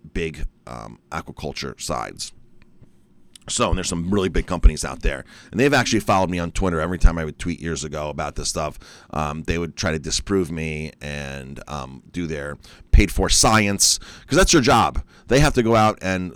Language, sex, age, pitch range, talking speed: English, male, 40-59, 80-95 Hz, 195 wpm